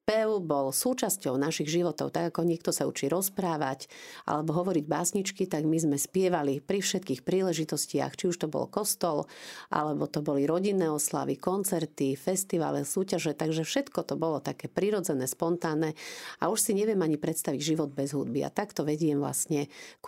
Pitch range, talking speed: 145-175 Hz, 165 wpm